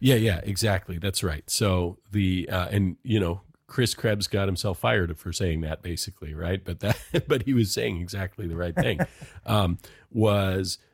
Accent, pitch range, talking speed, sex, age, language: American, 85-100 Hz, 180 wpm, male, 40-59, English